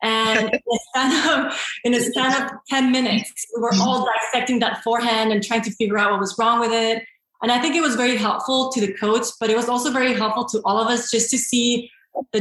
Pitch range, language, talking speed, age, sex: 205-240 Hz, English, 225 wpm, 20-39, female